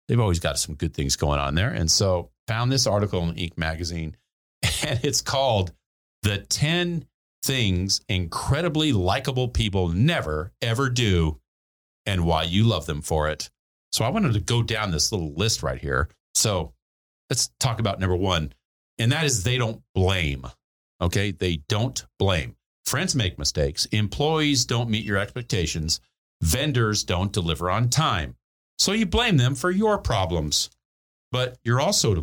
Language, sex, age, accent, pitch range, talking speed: English, male, 40-59, American, 80-125 Hz, 160 wpm